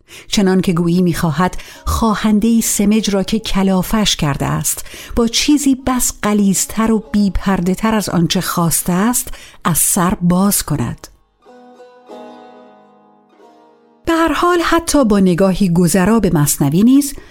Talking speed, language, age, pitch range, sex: 110 wpm, Persian, 50-69, 170-250 Hz, female